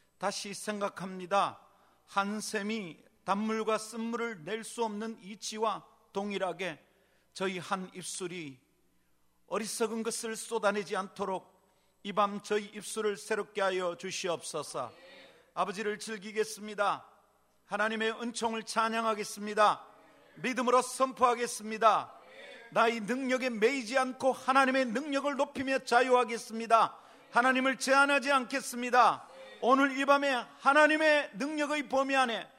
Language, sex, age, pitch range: Korean, male, 40-59, 215-290 Hz